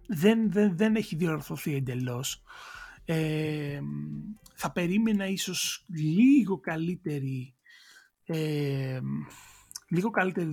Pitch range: 145-195 Hz